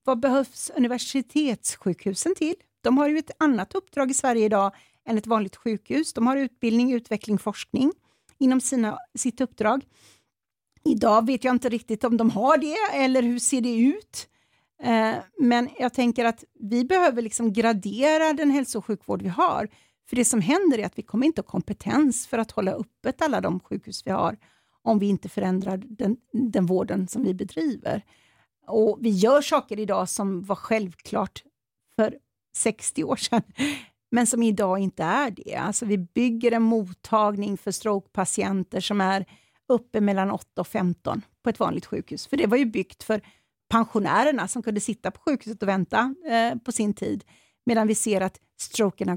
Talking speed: 175 wpm